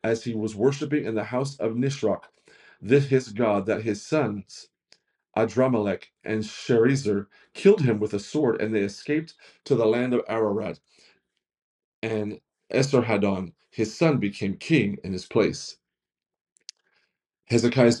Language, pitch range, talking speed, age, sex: English, 110-135 Hz, 135 wpm, 40-59, male